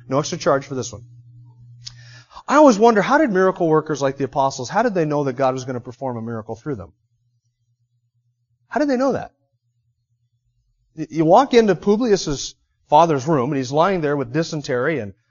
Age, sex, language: 30-49, male, English